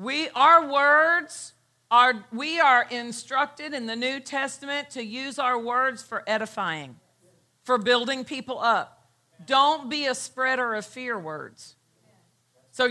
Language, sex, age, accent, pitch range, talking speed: English, female, 50-69, American, 220-275 Hz, 135 wpm